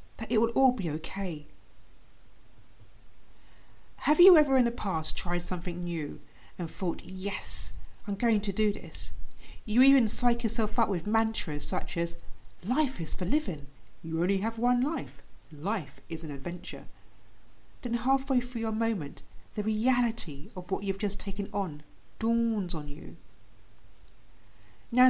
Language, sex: English, female